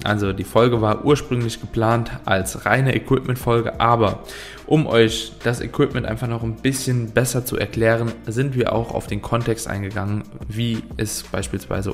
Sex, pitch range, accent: male, 105-125 Hz, German